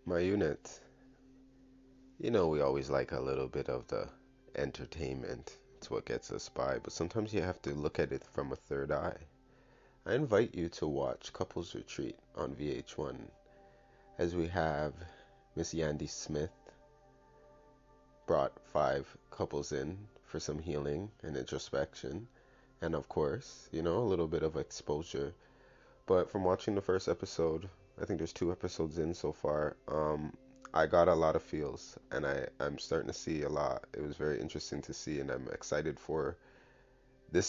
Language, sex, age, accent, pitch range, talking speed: English, male, 30-49, American, 75-95 Hz, 165 wpm